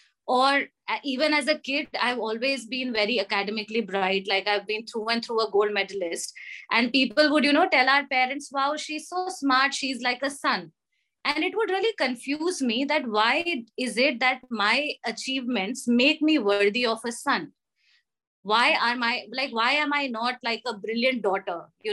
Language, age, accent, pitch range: English, 20-39, Indian, 225-285 Hz